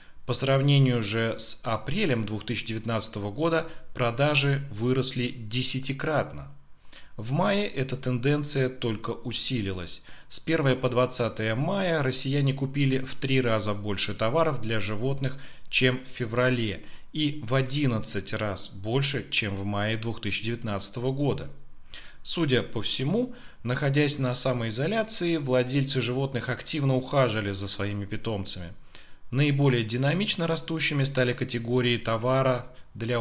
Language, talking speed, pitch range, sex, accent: Russian, 115 wpm, 110-140 Hz, male, native